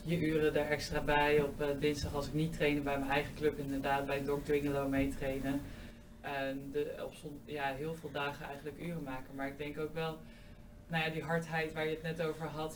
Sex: female